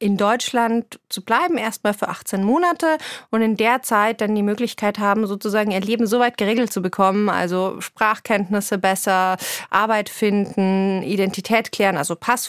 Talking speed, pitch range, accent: 155 wpm, 180-230 Hz, German